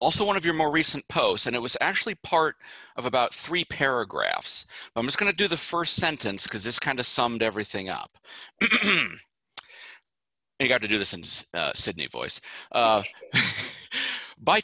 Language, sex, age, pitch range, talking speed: English, male, 40-59, 110-170 Hz, 170 wpm